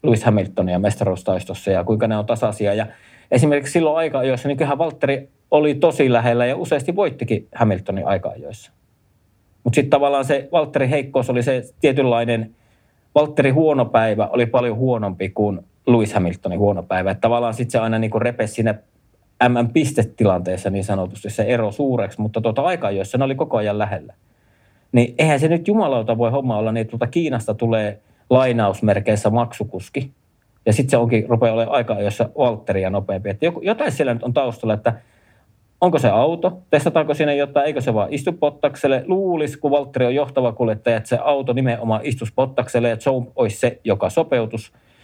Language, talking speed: Finnish, 165 wpm